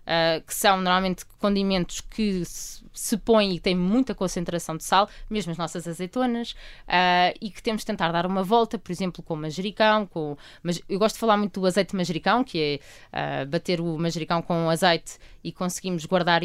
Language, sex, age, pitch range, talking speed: Portuguese, female, 20-39, 165-205 Hz, 210 wpm